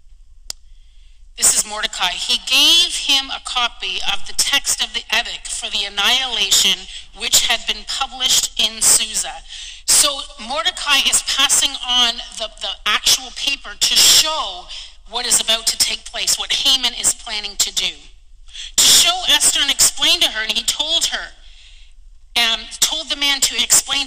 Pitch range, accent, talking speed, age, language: 220-290 Hz, American, 155 wpm, 40-59, English